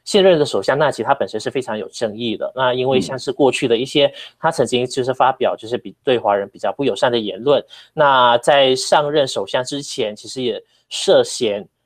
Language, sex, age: Chinese, male, 20-39